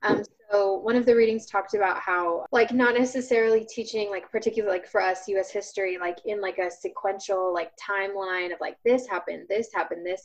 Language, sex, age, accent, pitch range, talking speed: English, female, 20-39, American, 180-205 Hz, 200 wpm